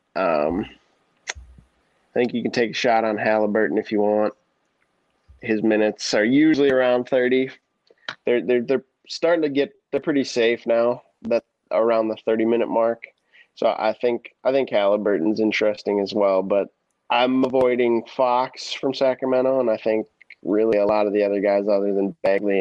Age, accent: 20-39, American